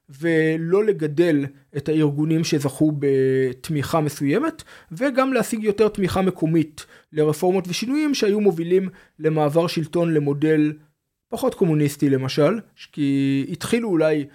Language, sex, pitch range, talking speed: Hebrew, male, 145-180 Hz, 105 wpm